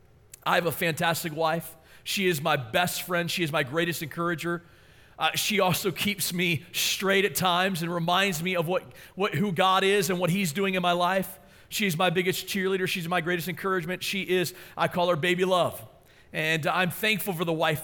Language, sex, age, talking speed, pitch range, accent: English, male, 40-59, 200 wpm, 175-220 Hz, American